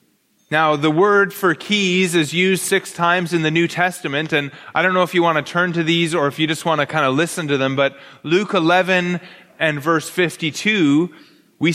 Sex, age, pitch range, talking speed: male, 30-49, 160-195 Hz, 215 wpm